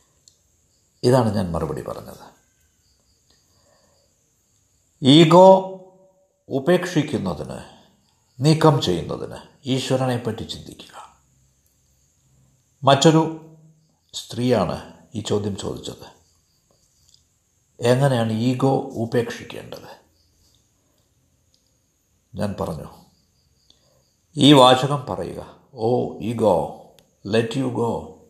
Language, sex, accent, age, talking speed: Malayalam, male, native, 60-79, 60 wpm